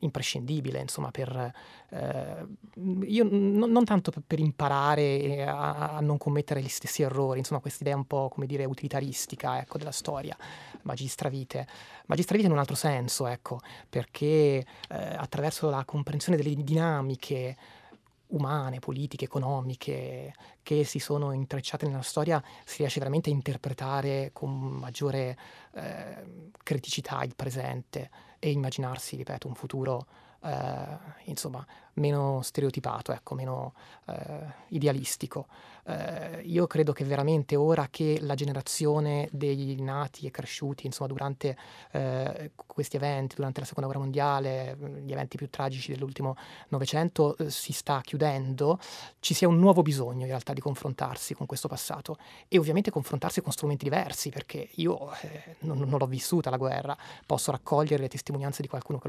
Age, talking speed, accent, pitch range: 30-49, 145 wpm, native, 135-150 Hz